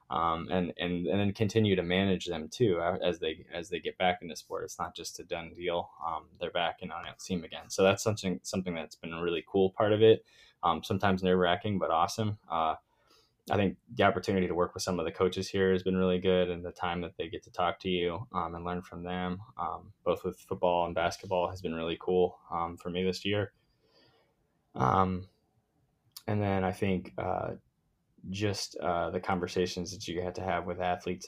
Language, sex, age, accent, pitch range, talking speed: English, male, 10-29, American, 90-100 Hz, 225 wpm